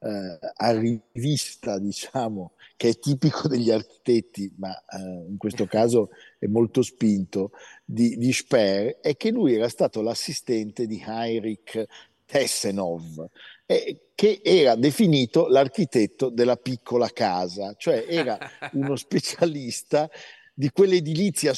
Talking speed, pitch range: 115 wpm, 105-140 Hz